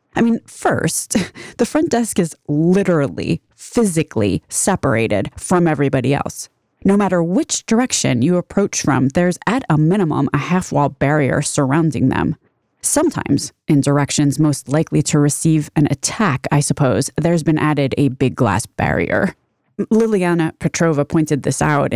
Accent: American